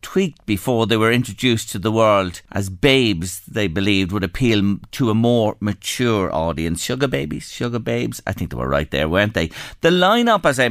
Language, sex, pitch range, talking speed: English, male, 105-150 Hz, 195 wpm